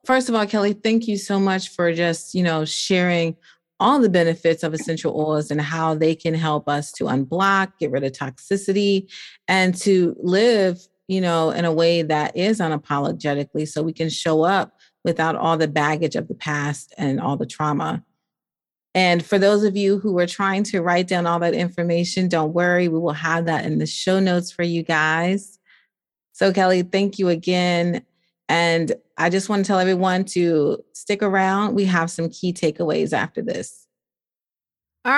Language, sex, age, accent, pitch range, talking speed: English, female, 30-49, American, 165-205 Hz, 185 wpm